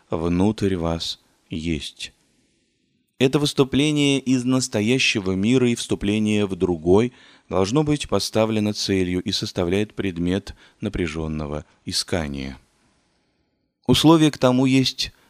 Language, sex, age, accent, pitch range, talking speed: Russian, male, 30-49, native, 90-120 Hz, 100 wpm